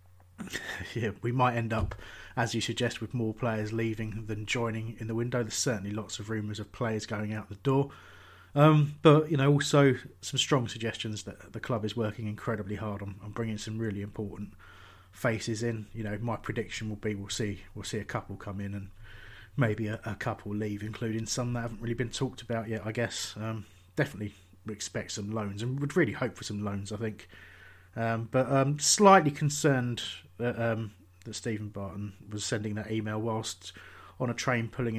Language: English